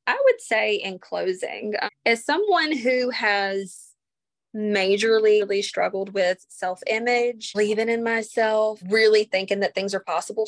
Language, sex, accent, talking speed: English, female, American, 130 wpm